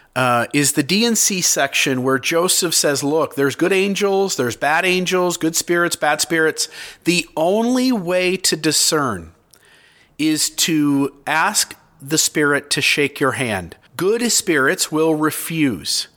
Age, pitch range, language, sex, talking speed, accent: 50-69, 140-185 Hz, English, male, 135 wpm, American